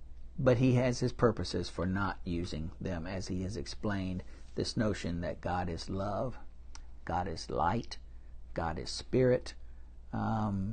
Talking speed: 145 wpm